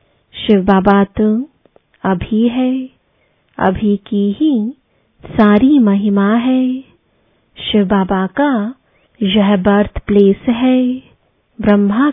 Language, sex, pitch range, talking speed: English, female, 200-255 Hz, 90 wpm